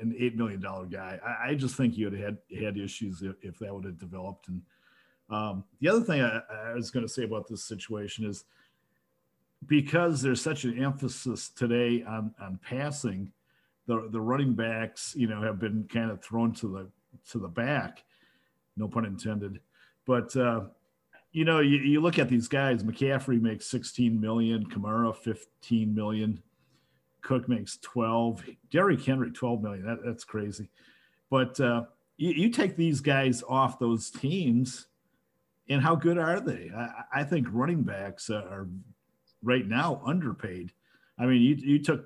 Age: 50-69